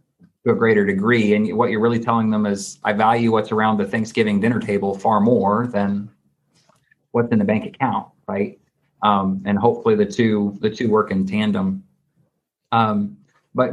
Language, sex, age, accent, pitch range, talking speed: English, male, 30-49, American, 110-145 Hz, 175 wpm